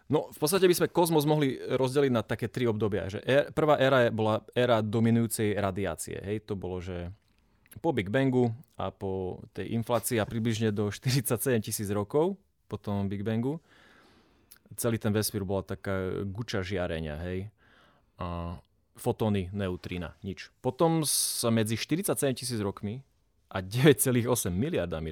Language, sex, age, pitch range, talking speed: Slovak, male, 20-39, 95-120 Hz, 145 wpm